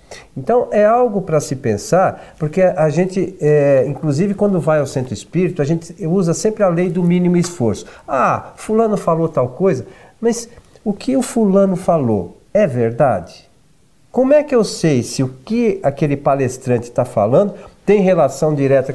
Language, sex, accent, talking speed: Portuguese, male, Brazilian, 165 wpm